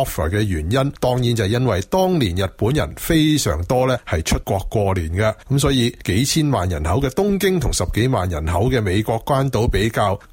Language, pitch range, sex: Chinese, 105-145 Hz, male